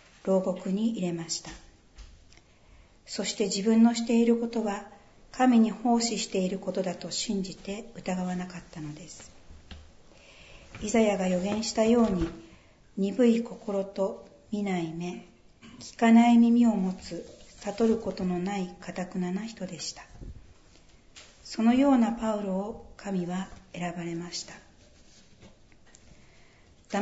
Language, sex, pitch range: Japanese, female, 175-220 Hz